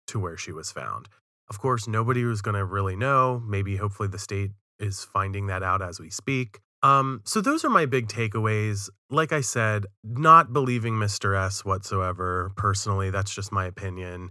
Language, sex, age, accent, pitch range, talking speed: English, male, 30-49, American, 100-125 Hz, 175 wpm